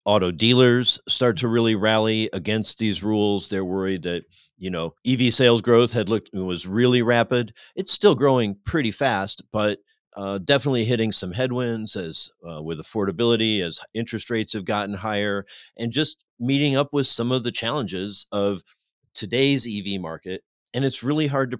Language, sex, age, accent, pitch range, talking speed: English, male, 40-59, American, 100-120 Hz, 170 wpm